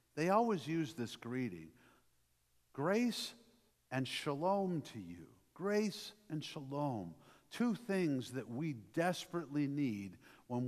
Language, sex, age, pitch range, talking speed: English, male, 50-69, 130-190 Hz, 110 wpm